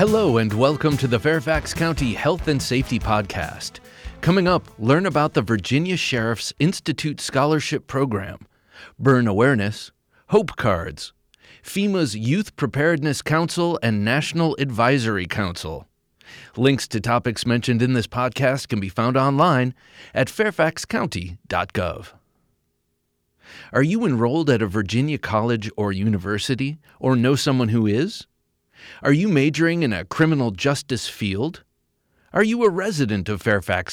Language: English